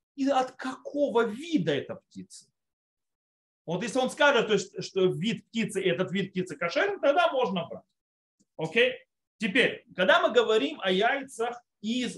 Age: 30-49